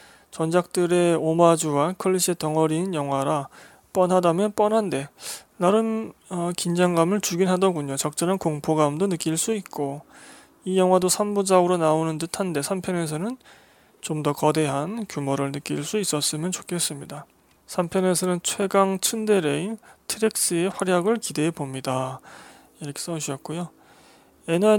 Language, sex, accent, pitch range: Korean, male, native, 150-195 Hz